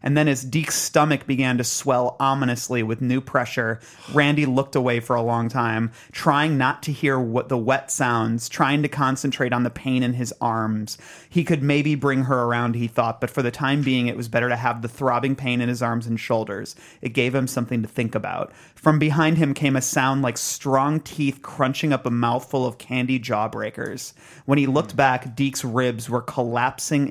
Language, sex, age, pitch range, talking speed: English, male, 30-49, 120-145 Hz, 205 wpm